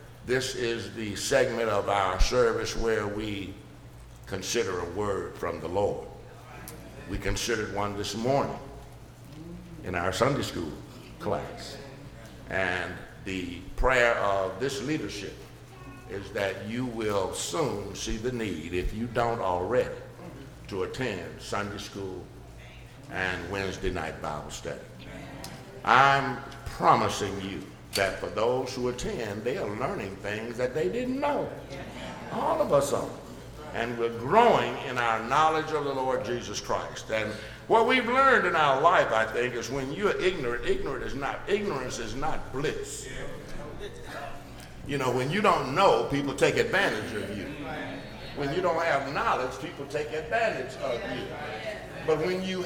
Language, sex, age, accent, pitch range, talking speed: English, male, 60-79, American, 100-150 Hz, 140 wpm